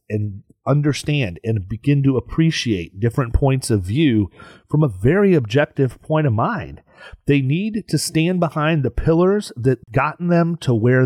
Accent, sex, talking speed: American, male, 155 wpm